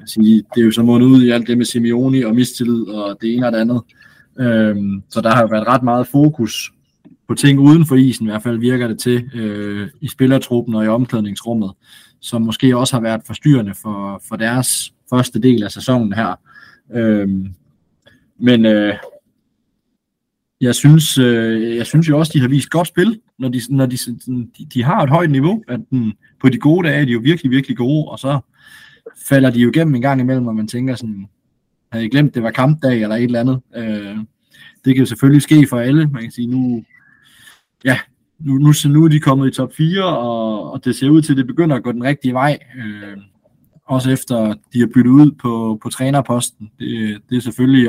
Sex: male